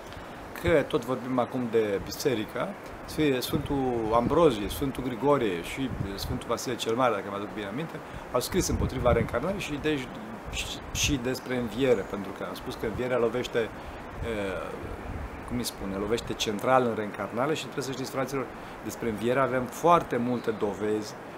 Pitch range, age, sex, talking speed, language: 110-135 Hz, 40-59, male, 155 wpm, Romanian